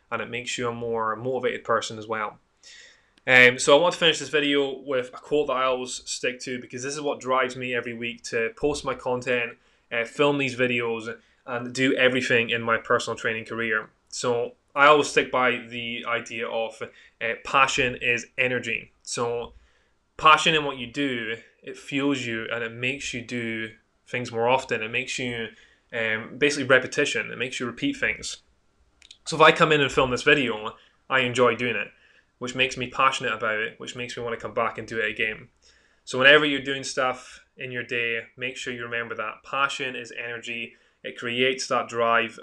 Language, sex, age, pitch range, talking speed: English, male, 10-29, 115-130 Hz, 200 wpm